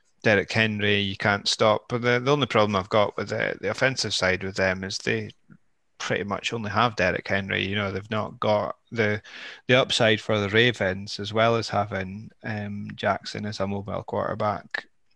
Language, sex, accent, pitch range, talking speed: English, male, British, 100-110 Hz, 190 wpm